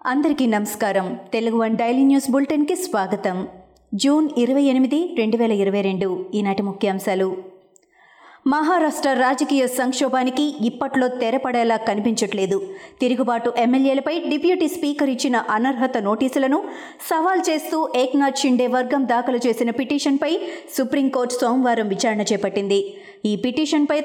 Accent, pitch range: native, 225-295 Hz